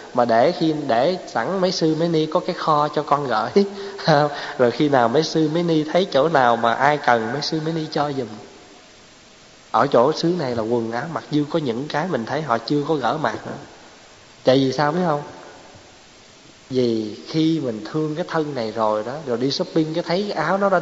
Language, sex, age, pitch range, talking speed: Vietnamese, male, 20-39, 125-175 Hz, 220 wpm